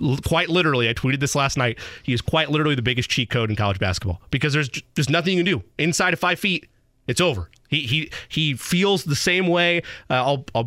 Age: 30-49